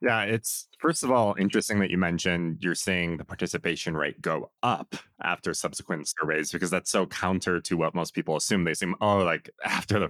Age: 30-49